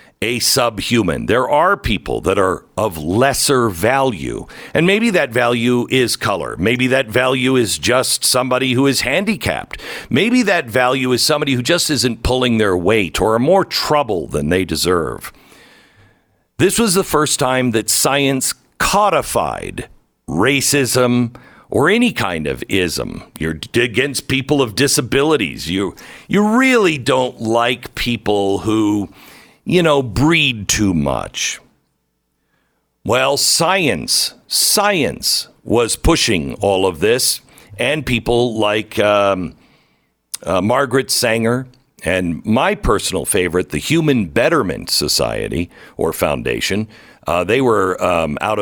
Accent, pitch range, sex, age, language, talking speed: American, 105-140 Hz, male, 50-69, English, 125 wpm